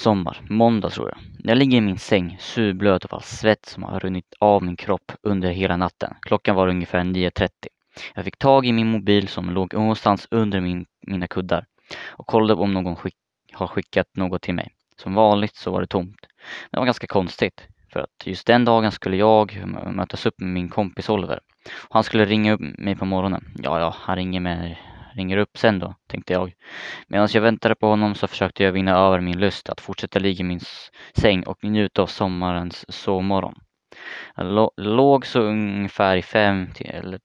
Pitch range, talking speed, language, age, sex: 95-105 Hz, 195 wpm, Swedish, 20-39, male